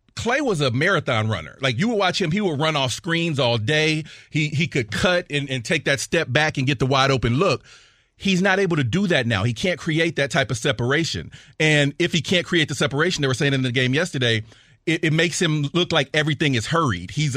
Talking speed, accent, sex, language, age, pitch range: 245 wpm, American, male, English, 40-59, 120-155 Hz